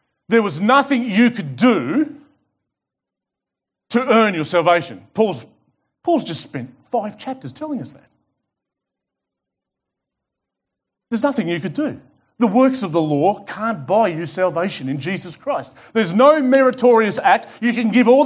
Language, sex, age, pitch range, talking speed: English, male, 40-59, 160-250 Hz, 145 wpm